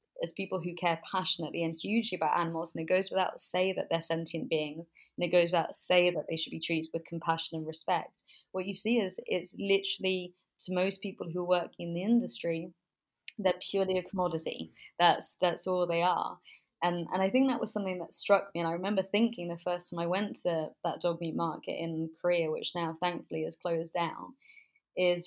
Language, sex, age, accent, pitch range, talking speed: English, female, 30-49, British, 165-195 Hz, 210 wpm